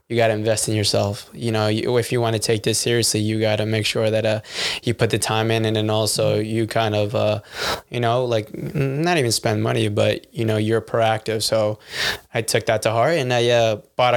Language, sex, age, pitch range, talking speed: English, male, 20-39, 110-120 Hz, 235 wpm